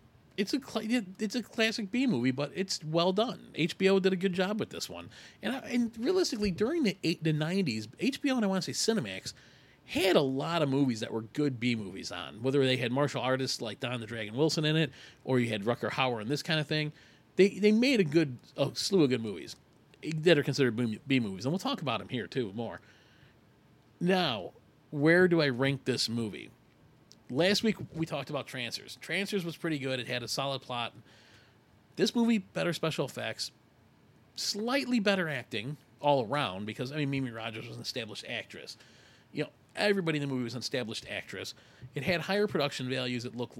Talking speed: 200 wpm